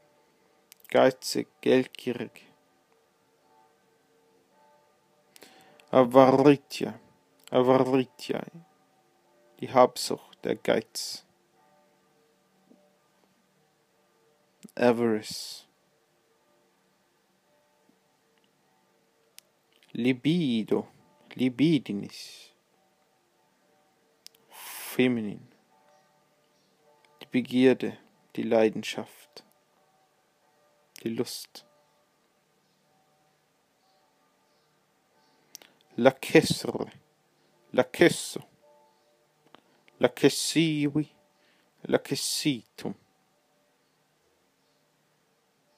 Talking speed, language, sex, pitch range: 35 wpm, English, male, 130-150 Hz